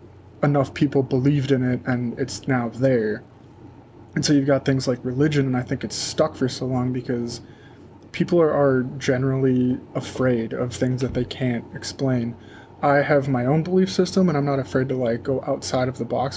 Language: English